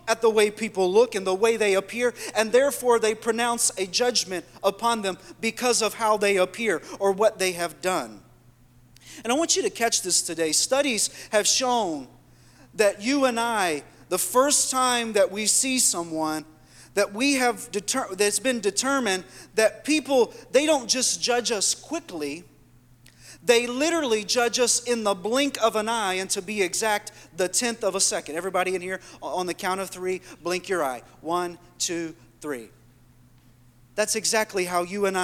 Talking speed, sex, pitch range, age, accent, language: 170 wpm, male, 175-250 Hz, 40-59, American, English